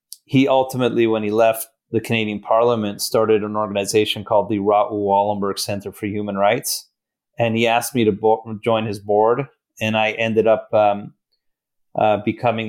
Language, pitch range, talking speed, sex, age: English, 105-115 Hz, 165 wpm, male, 30-49